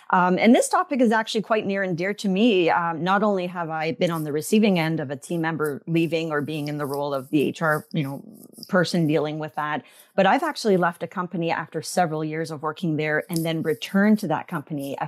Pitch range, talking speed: 155-185 Hz, 240 wpm